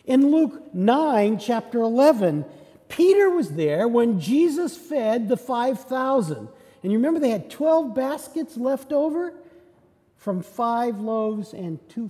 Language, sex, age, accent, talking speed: English, male, 50-69, American, 135 wpm